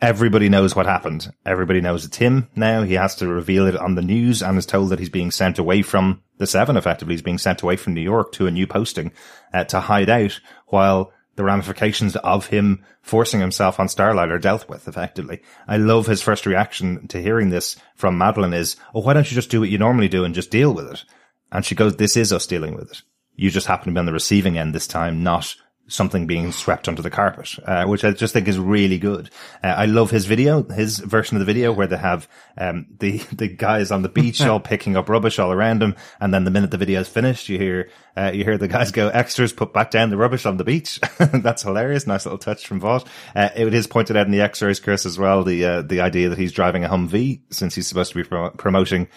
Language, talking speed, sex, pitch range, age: English, 250 wpm, male, 95-110 Hz, 30-49